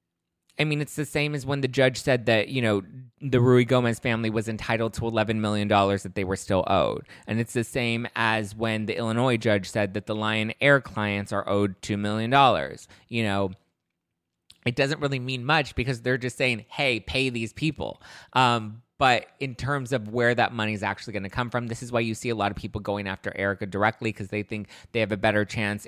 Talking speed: 225 wpm